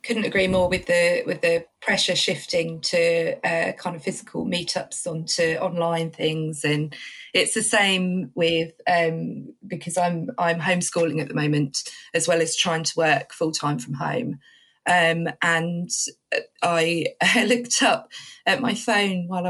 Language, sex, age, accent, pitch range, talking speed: English, female, 20-39, British, 165-190 Hz, 155 wpm